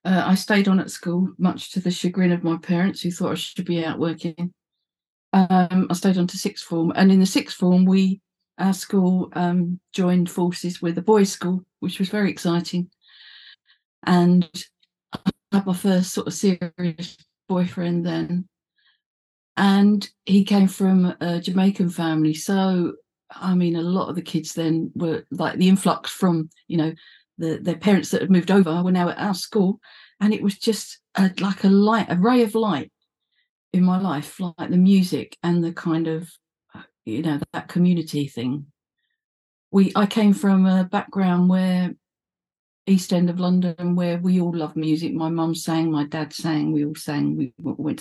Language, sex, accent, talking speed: English, female, British, 180 wpm